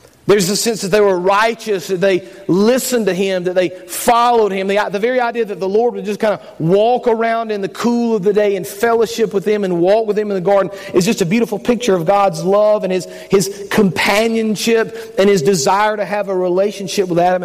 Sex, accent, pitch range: male, American, 190-230 Hz